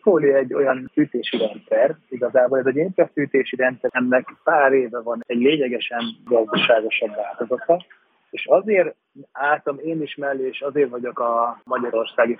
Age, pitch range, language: 30-49, 115-135 Hz, Hungarian